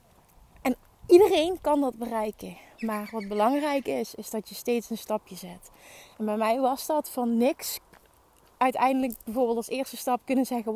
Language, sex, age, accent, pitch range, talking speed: Dutch, female, 20-39, Dutch, 240-325 Hz, 160 wpm